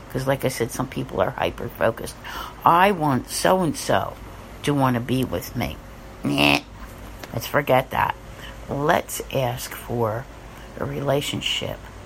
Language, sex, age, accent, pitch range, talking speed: English, female, 60-79, American, 110-130 Hz, 145 wpm